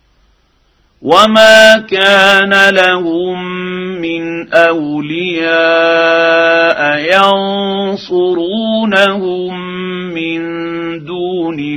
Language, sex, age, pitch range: Arabic, male, 50-69, 165-195 Hz